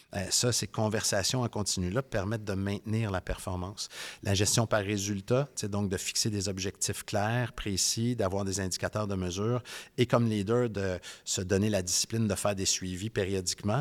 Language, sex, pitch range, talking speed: French, male, 95-115 Hz, 175 wpm